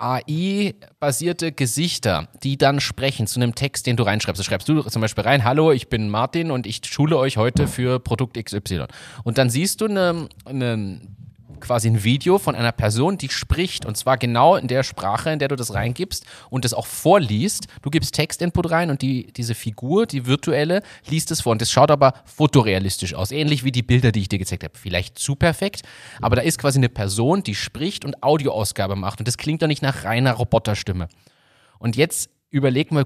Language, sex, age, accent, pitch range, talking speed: German, male, 30-49, German, 110-140 Hz, 205 wpm